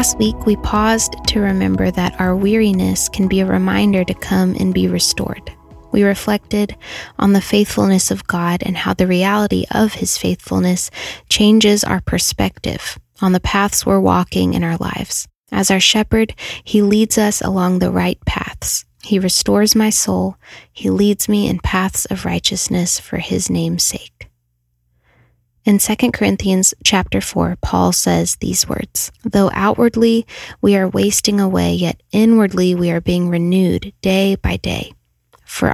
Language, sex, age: English, female, 10-29